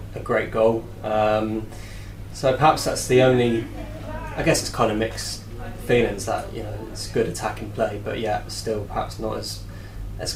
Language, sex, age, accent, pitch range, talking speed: English, male, 20-39, British, 105-115 Hz, 185 wpm